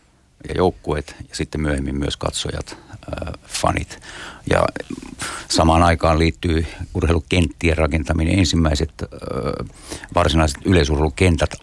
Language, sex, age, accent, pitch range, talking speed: Finnish, male, 60-79, native, 75-85 Hz, 90 wpm